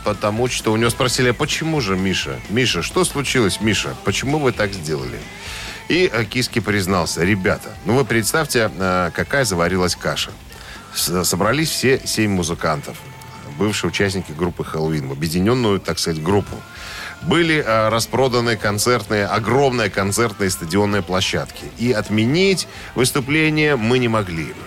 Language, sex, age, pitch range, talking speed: Russian, male, 10-29, 95-125 Hz, 130 wpm